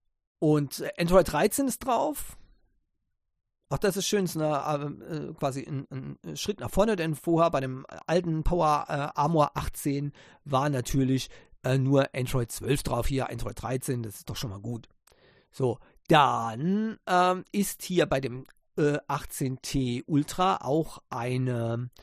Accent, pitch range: German, 130-175 Hz